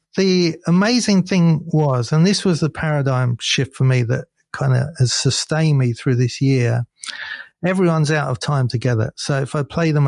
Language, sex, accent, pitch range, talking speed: English, male, British, 130-160 Hz, 185 wpm